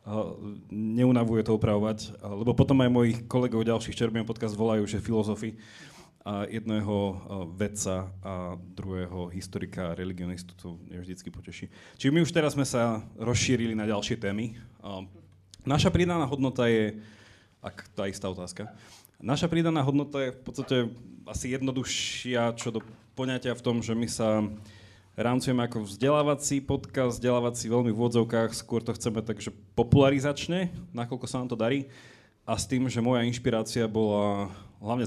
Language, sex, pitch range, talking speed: Slovak, male, 105-130 Hz, 155 wpm